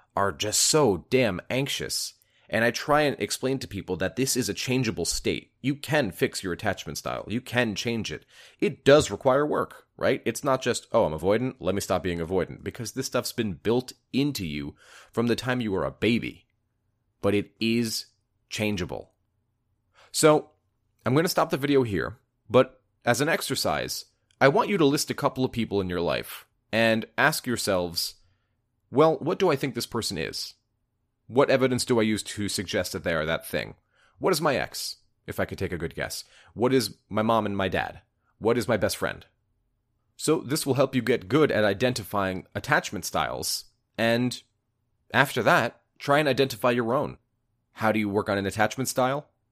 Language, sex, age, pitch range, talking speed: English, male, 30-49, 100-125 Hz, 195 wpm